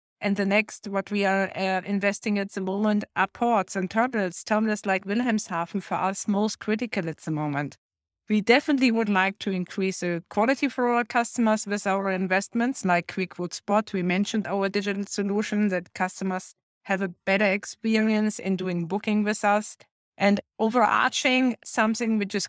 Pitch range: 190-220 Hz